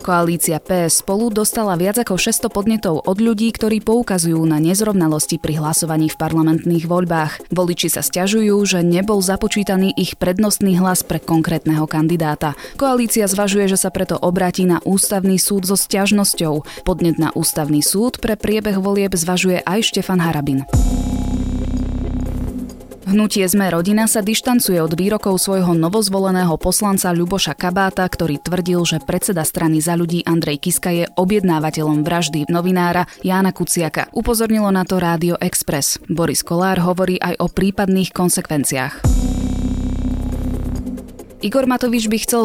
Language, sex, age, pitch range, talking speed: Slovak, female, 20-39, 160-200 Hz, 135 wpm